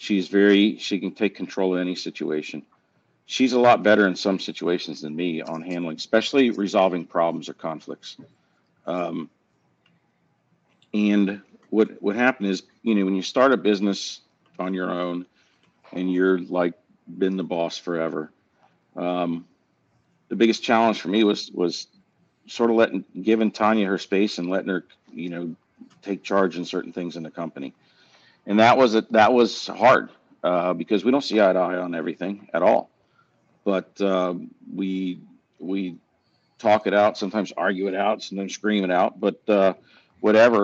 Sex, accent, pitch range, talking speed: male, American, 90-110 Hz, 165 wpm